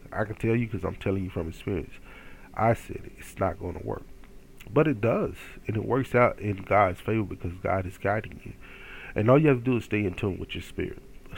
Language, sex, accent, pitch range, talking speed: English, male, American, 95-130 Hz, 245 wpm